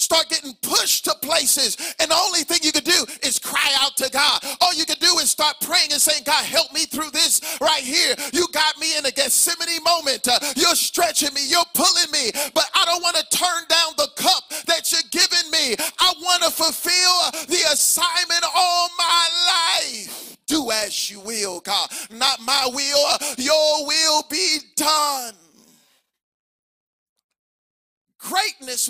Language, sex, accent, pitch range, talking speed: English, male, American, 275-335 Hz, 170 wpm